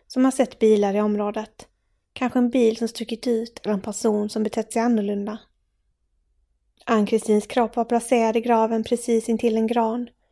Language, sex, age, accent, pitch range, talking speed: English, female, 20-39, Swedish, 200-225 Hz, 170 wpm